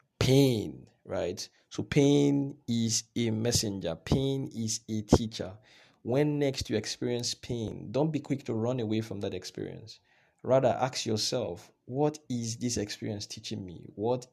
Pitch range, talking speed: 95-120 Hz, 145 wpm